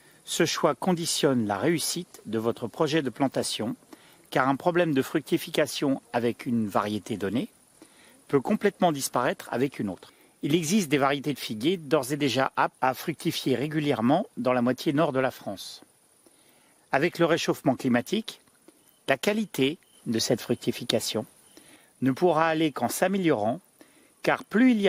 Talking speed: 150 wpm